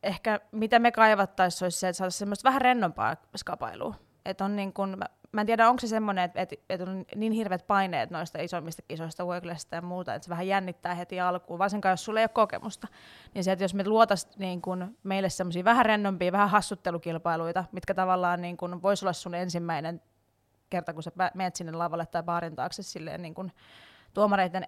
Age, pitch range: 20-39, 175-195 Hz